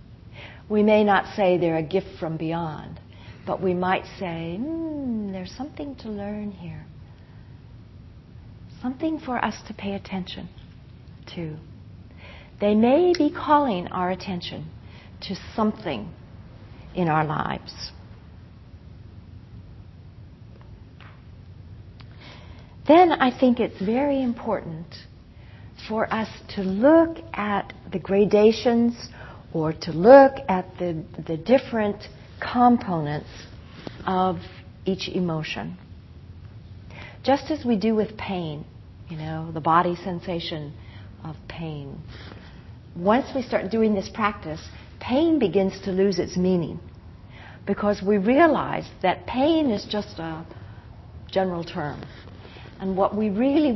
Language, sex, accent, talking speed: English, female, American, 110 wpm